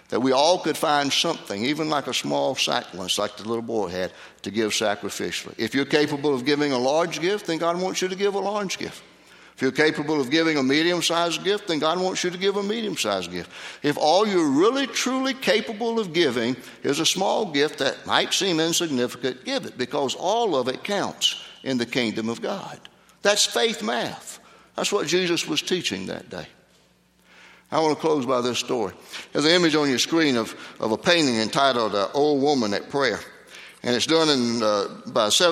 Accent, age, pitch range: American, 60-79, 125-160 Hz